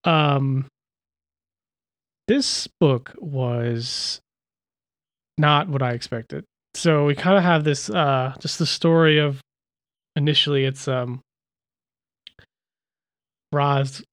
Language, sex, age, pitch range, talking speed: English, male, 20-39, 130-150 Hz, 100 wpm